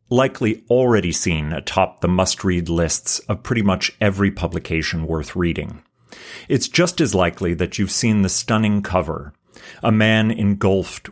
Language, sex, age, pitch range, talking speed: English, male, 40-59, 85-105 Hz, 145 wpm